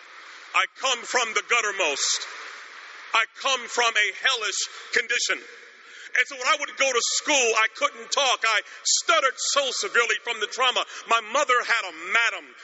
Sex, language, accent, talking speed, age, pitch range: male, English, American, 160 wpm, 40-59, 235-305 Hz